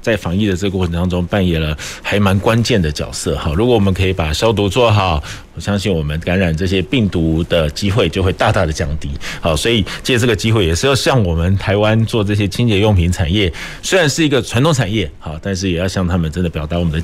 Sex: male